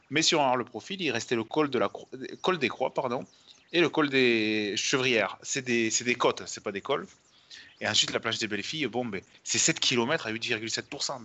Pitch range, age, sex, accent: 115-155 Hz, 30-49, male, French